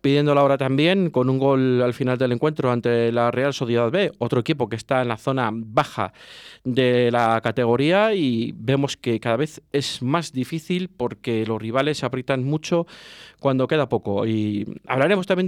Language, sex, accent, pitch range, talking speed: Spanish, male, Spanish, 120-145 Hz, 180 wpm